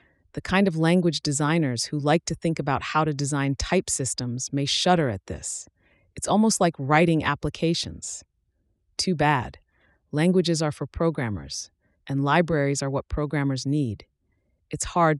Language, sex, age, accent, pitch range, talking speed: English, female, 30-49, American, 130-160 Hz, 150 wpm